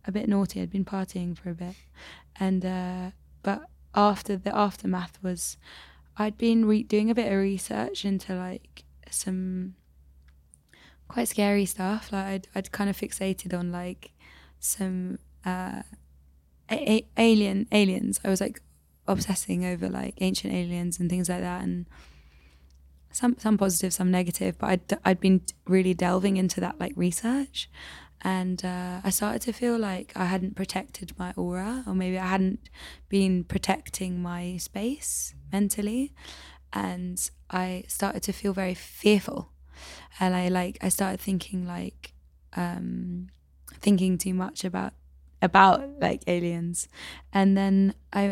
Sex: female